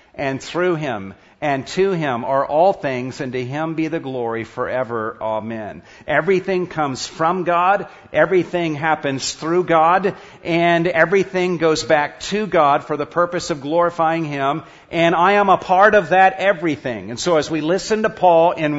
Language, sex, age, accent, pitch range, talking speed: English, male, 50-69, American, 140-185 Hz, 170 wpm